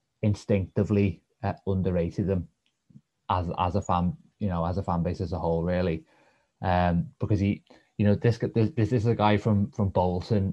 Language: English